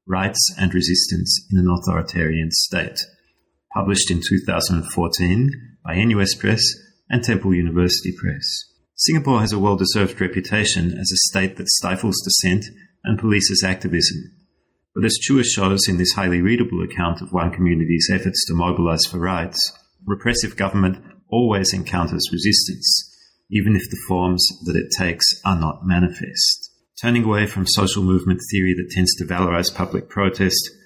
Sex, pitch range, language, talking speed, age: male, 90-100 Hz, English, 145 wpm, 30-49